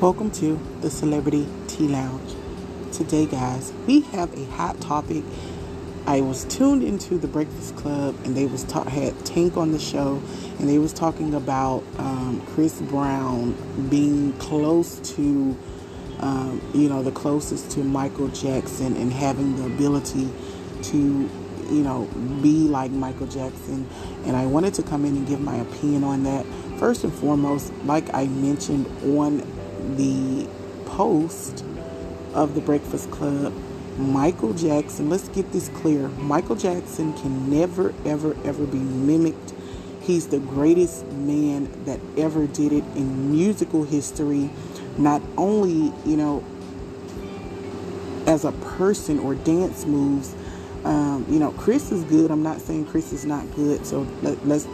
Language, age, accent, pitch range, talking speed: English, 30-49, American, 130-155 Hz, 145 wpm